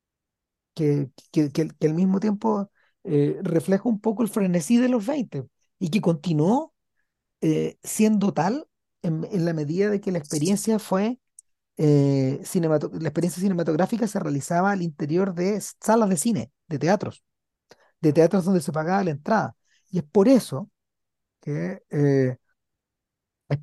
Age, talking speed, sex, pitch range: 40-59, 130 wpm, male, 150-200 Hz